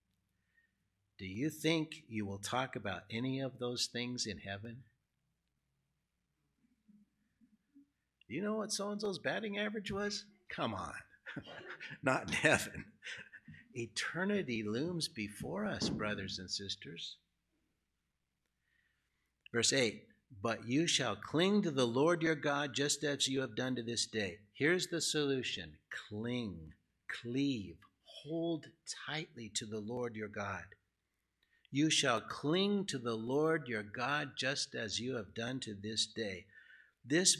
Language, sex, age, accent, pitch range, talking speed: English, male, 60-79, American, 110-155 Hz, 130 wpm